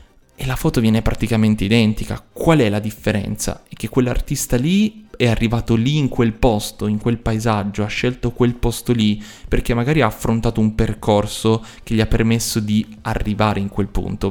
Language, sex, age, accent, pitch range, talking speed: Italian, male, 20-39, native, 105-125 Hz, 180 wpm